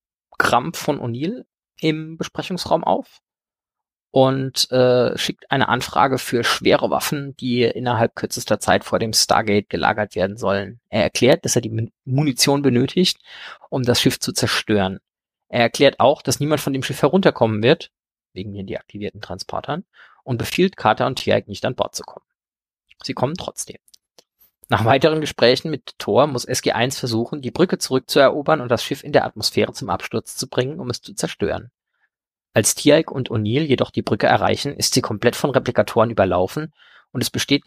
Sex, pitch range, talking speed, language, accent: male, 115-145 Hz, 165 wpm, German, German